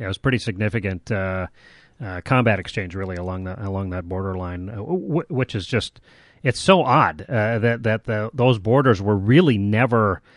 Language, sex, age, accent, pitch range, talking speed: English, male, 30-49, American, 105-130 Hz, 170 wpm